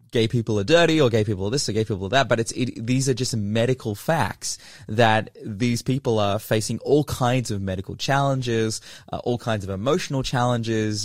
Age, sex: 20-39, male